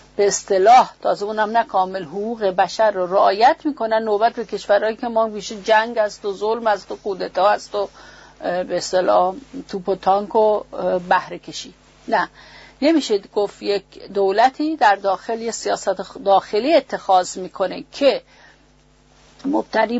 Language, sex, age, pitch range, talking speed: English, female, 50-69, 200-260 Hz, 135 wpm